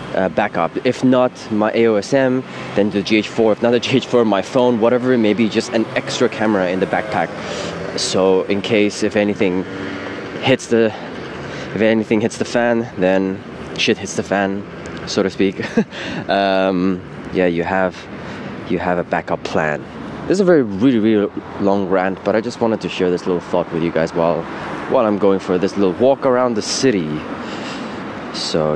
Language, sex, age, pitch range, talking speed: English, male, 20-39, 90-115 Hz, 180 wpm